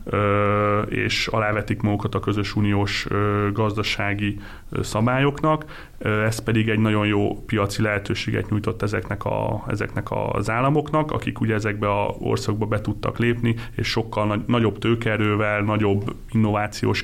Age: 30-49